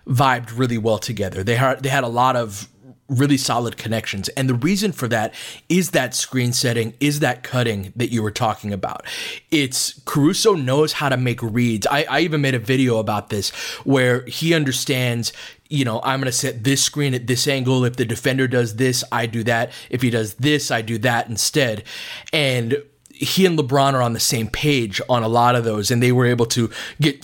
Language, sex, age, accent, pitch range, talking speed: English, male, 30-49, American, 115-140 Hz, 210 wpm